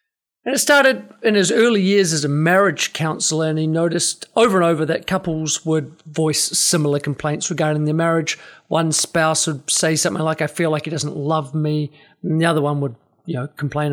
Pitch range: 155-210 Hz